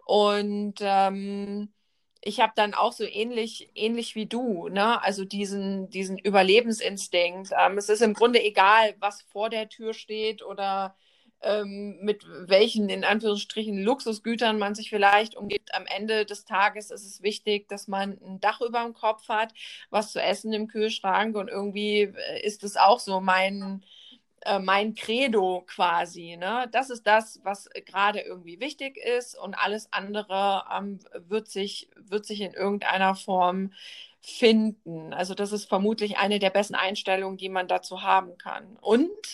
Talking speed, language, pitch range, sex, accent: 155 wpm, German, 195-220 Hz, female, German